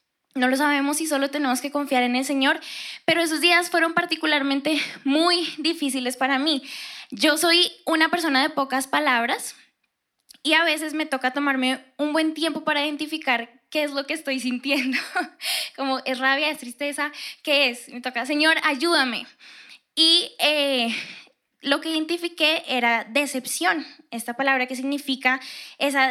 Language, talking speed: Spanish, 155 wpm